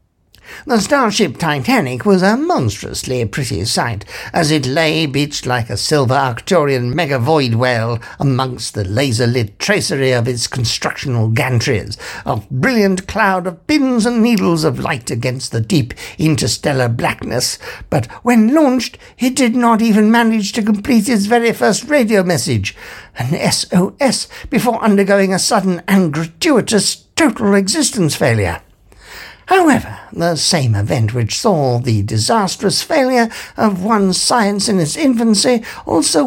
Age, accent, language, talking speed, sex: 60-79, British, English, 135 wpm, male